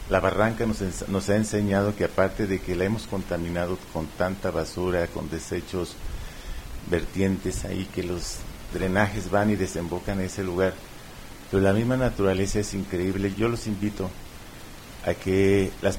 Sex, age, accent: male, 50-69, Mexican